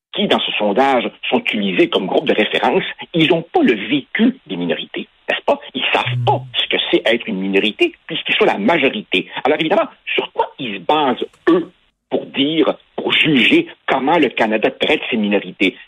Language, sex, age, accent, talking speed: French, male, 60-79, French, 190 wpm